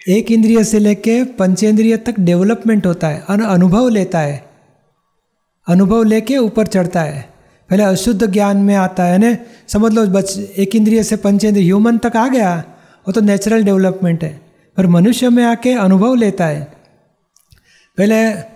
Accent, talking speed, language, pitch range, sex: native, 160 wpm, Hindi, 185-215 Hz, male